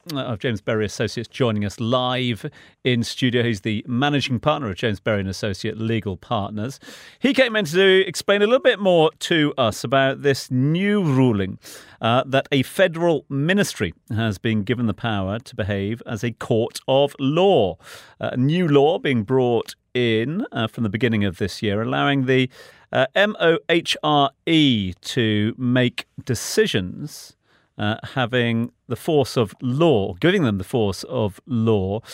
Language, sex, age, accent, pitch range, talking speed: English, male, 40-59, British, 110-145 Hz, 155 wpm